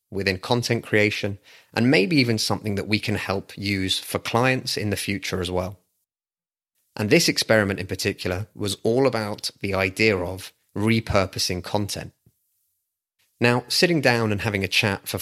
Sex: male